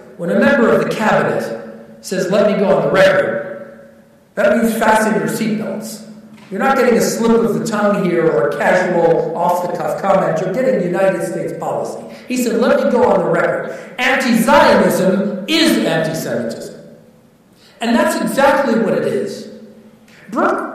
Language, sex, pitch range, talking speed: English, male, 195-265 Hz, 175 wpm